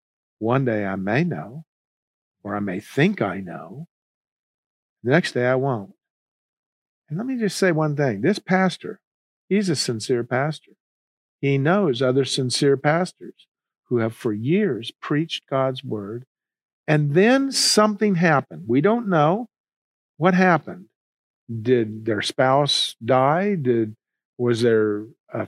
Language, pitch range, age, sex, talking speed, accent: English, 120-180 Hz, 50-69, male, 135 wpm, American